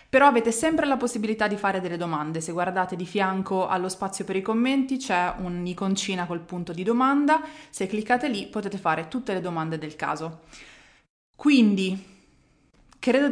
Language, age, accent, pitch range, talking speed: Italian, 20-39, native, 180-230 Hz, 160 wpm